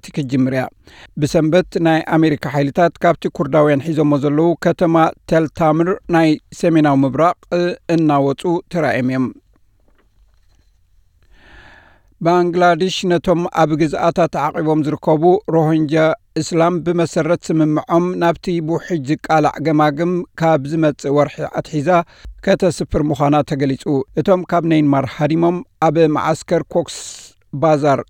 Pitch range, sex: 150-170 Hz, male